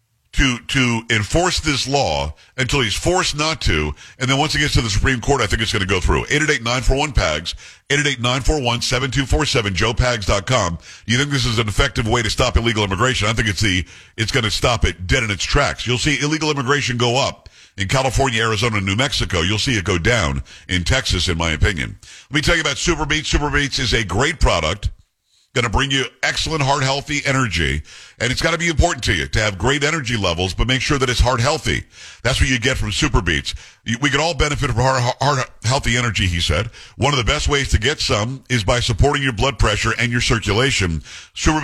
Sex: male